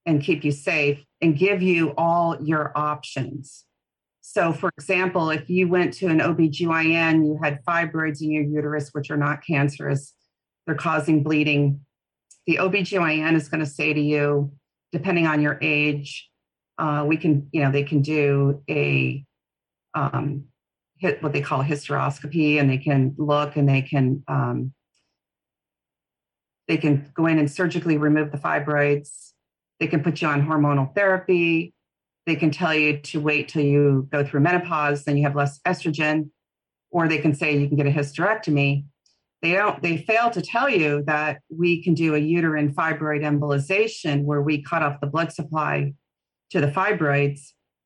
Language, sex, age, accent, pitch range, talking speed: English, female, 40-59, American, 145-170 Hz, 170 wpm